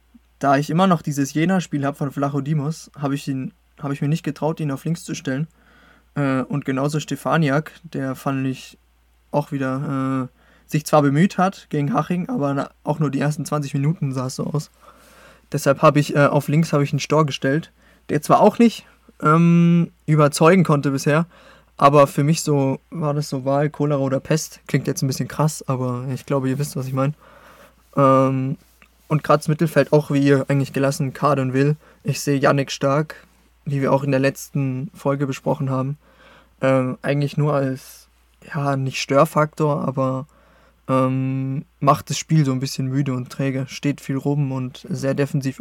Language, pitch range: German, 135-150 Hz